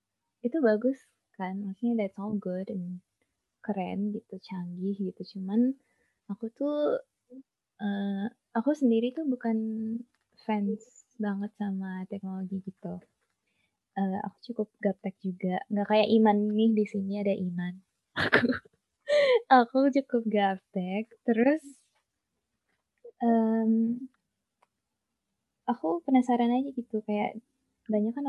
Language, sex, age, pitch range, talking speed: Indonesian, female, 20-39, 195-235 Hz, 105 wpm